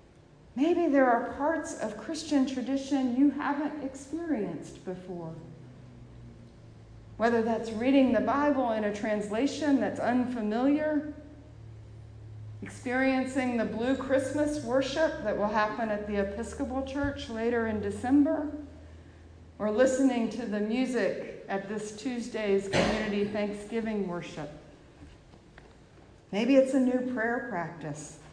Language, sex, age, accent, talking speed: English, female, 50-69, American, 110 wpm